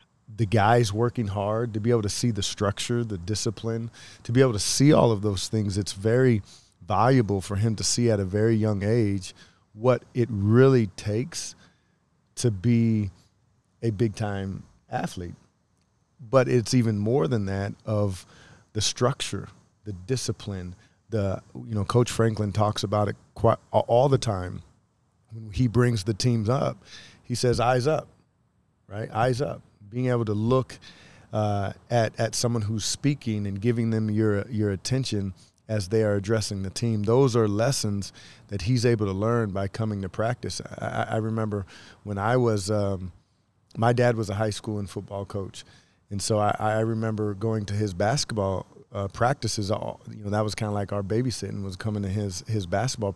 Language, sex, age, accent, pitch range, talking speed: English, male, 30-49, American, 105-120 Hz, 175 wpm